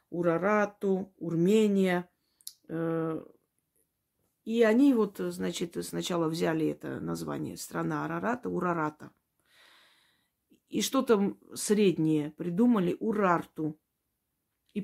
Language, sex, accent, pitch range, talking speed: Russian, female, native, 165-205 Hz, 80 wpm